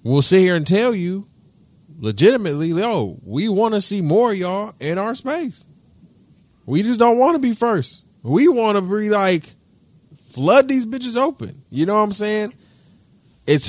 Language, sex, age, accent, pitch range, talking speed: English, male, 20-39, American, 105-140 Hz, 170 wpm